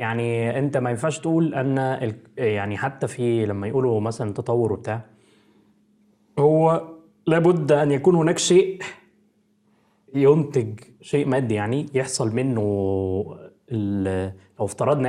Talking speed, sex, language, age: 120 wpm, male, Arabic, 20-39